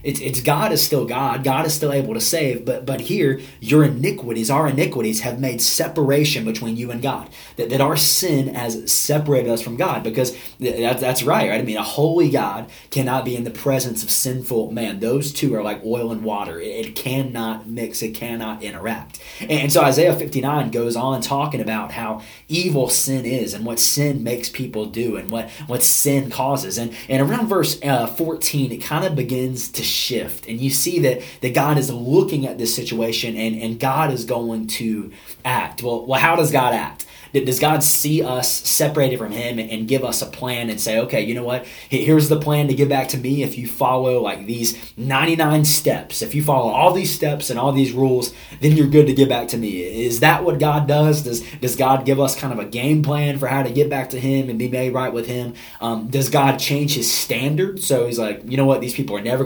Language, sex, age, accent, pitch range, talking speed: English, male, 20-39, American, 115-145 Hz, 225 wpm